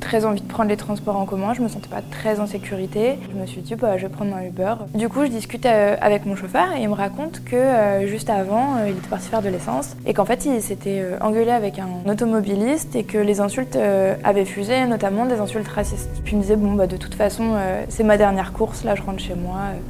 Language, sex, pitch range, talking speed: French, female, 200-240 Hz, 245 wpm